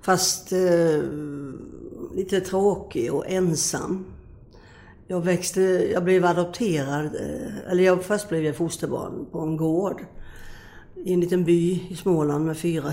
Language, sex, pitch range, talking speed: Swedish, female, 145-185 Hz, 135 wpm